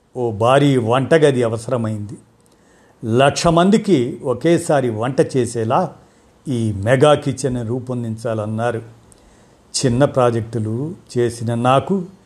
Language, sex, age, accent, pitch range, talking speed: Telugu, male, 50-69, native, 120-150 Hz, 85 wpm